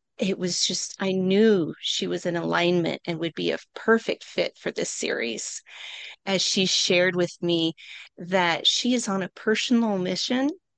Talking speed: 165 wpm